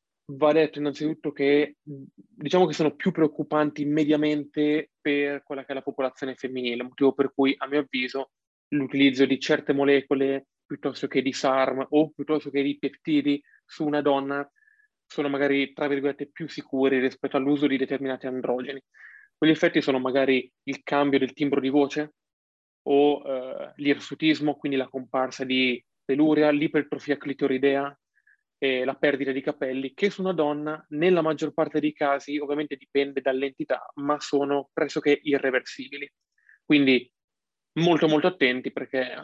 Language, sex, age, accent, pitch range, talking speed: Italian, male, 20-39, native, 135-150 Hz, 145 wpm